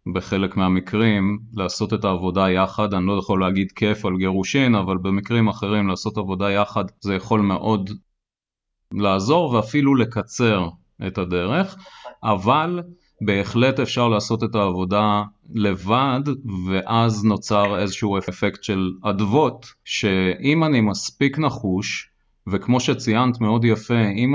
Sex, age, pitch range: male, 30-49, 100-125 Hz